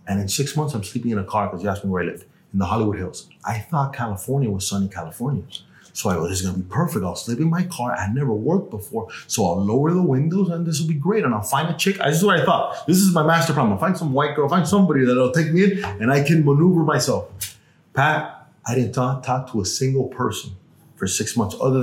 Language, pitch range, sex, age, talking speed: English, 110-155 Hz, male, 30-49, 260 wpm